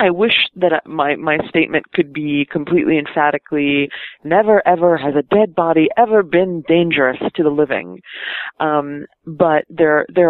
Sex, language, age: female, English, 30-49